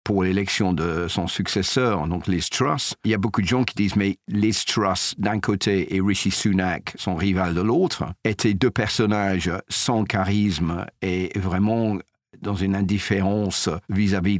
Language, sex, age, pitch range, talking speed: French, male, 50-69, 90-105 Hz, 165 wpm